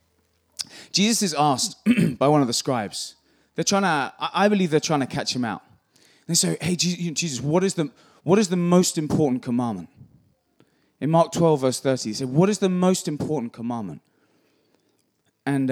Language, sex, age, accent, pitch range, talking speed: English, male, 20-39, British, 115-170 Hz, 170 wpm